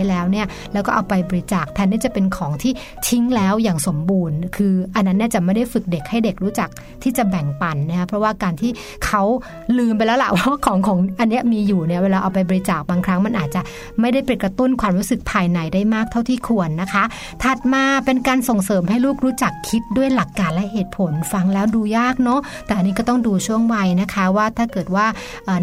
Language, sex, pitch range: Thai, female, 185-230 Hz